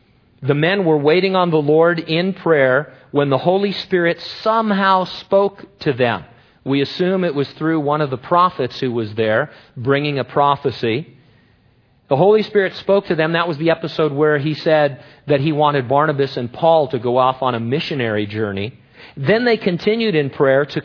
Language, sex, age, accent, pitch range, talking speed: English, male, 40-59, American, 130-175 Hz, 185 wpm